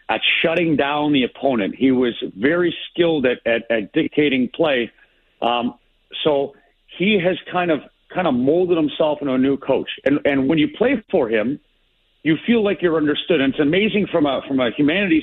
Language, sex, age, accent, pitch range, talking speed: English, male, 50-69, American, 130-170 Hz, 190 wpm